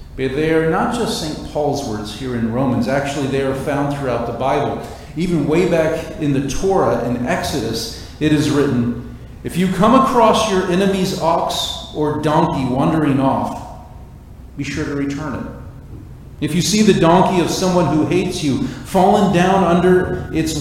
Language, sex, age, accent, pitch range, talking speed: English, male, 40-59, American, 125-170 Hz, 170 wpm